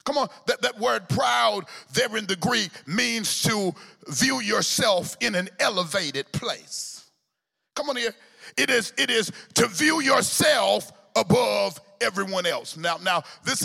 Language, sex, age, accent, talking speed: English, male, 40-59, American, 150 wpm